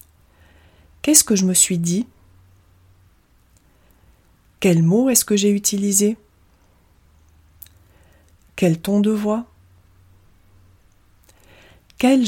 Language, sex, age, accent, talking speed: French, female, 30-49, French, 85 wpm